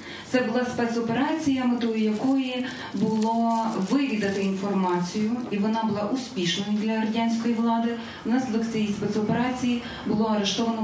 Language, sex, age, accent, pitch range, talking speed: Ukrainian, female, 20-39, native, 200-235 Hz, 115 wpm